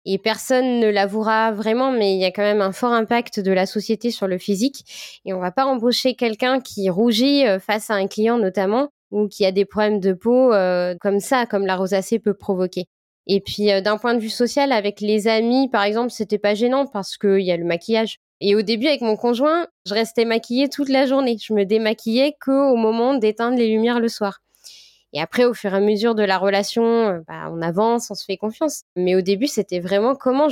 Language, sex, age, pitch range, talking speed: French, female, 20-39, 200-250 Hz, 230 wpm